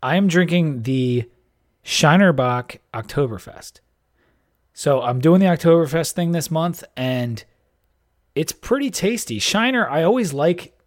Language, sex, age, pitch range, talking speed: English, male, 30-49, 120-165 Hz, 120 wpm